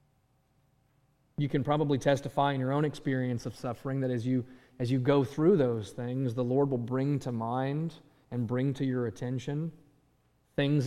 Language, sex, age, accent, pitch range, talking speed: English, male, 30-49, American, 120-145 Hz, 170 wpm